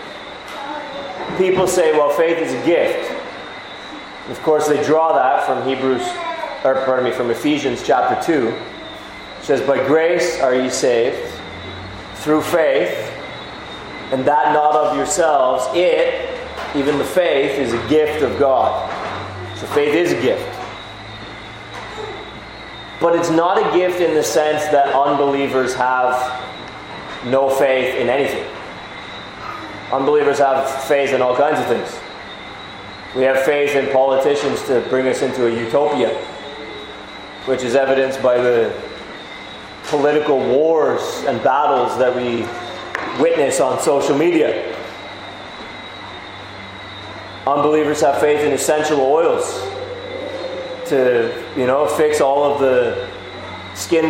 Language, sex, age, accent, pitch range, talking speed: English, male, 30-49, American, 130-165 Hz, 125 wpm